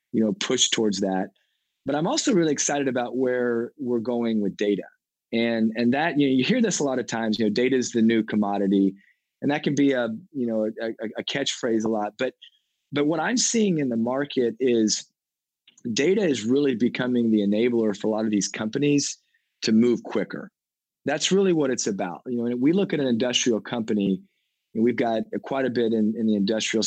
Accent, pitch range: American, 110-145 Hz